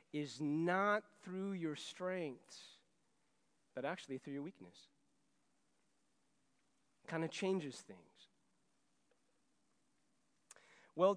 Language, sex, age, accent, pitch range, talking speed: English, male, 40-59, American, 150-195 Hz, 85 wpm